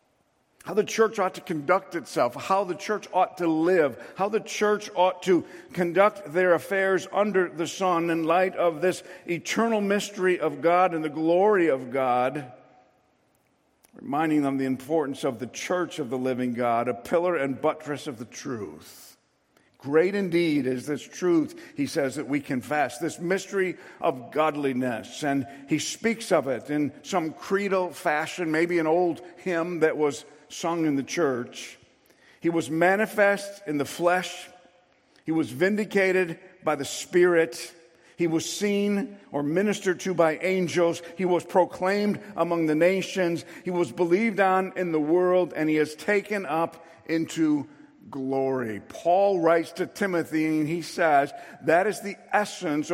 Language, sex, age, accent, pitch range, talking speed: English, male, 50-69, American, 150-185 Hz, 160 wpm